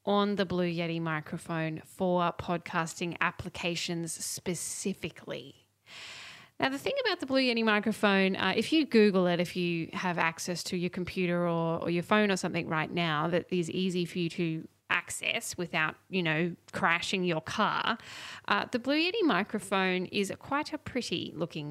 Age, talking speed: 10-29, 165 wpm